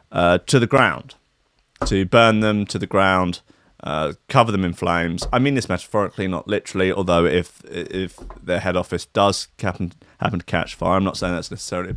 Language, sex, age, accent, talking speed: English, male, 30-49, British, 190 wpm